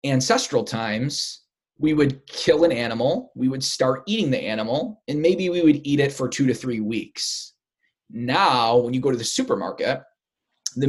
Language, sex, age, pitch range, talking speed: English, male, 20-39, 120-155 Hz, 175 wpm